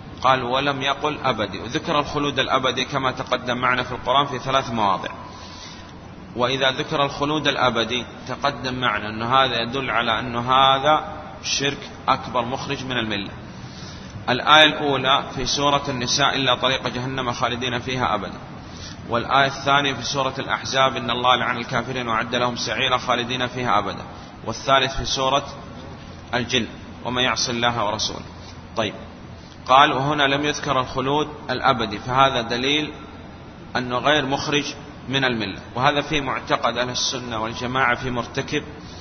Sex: male